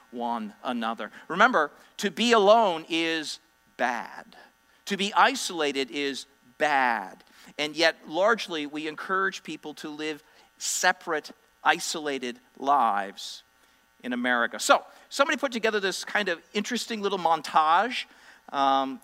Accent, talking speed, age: American, 115 wpm, 50-69